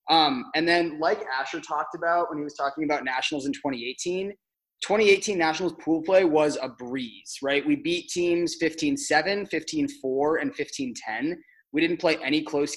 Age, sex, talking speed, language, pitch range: 20-39, male, 165 wpm, English, 145-190 Hz